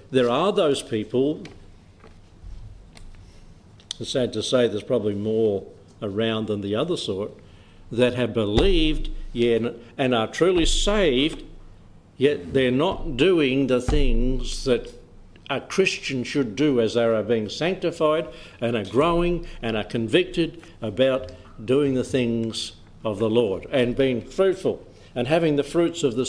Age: 60-79